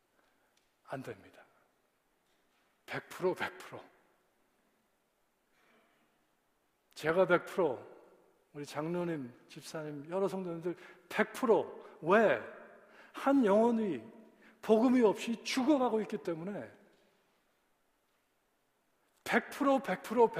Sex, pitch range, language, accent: male, 155-200 Hz, Korean, native